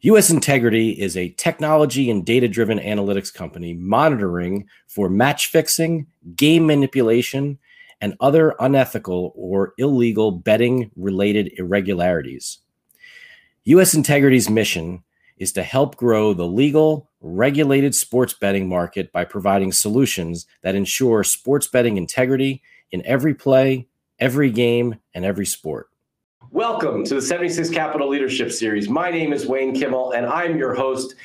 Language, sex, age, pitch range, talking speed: English, male, 40-59, 110-160 Hz, 125 wpm